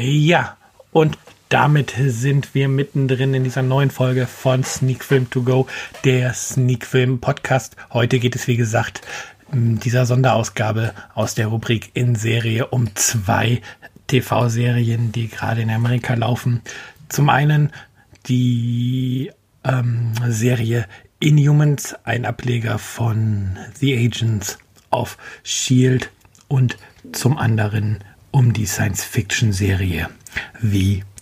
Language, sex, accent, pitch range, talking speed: German, male, German, 110-130 Hz, 115 wpm